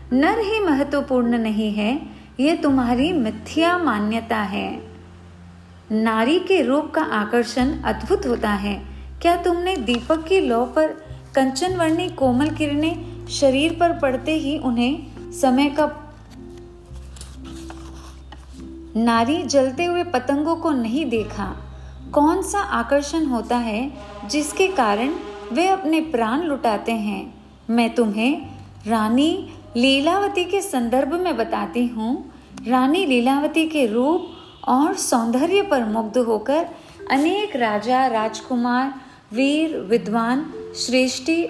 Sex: female